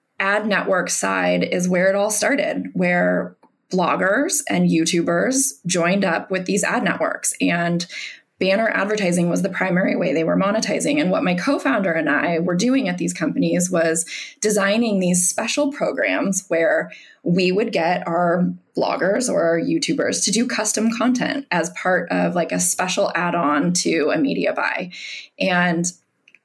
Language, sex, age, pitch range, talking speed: English, female, 20-39, 175-225 Hz, 150 wpm